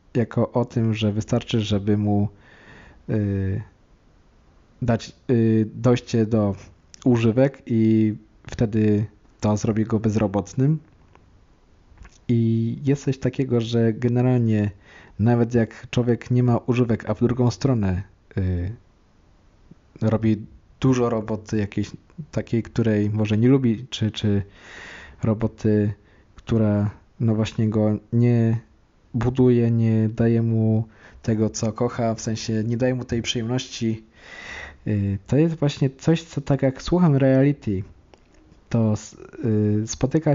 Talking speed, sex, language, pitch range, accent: 110 wpm, male, Polish, 105-125 Hz, native